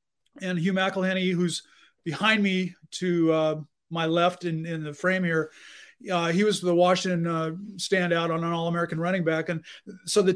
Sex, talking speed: male, 175 wpm